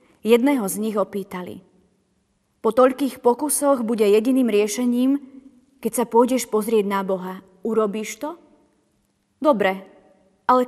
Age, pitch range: 30-49, 195-240 Hz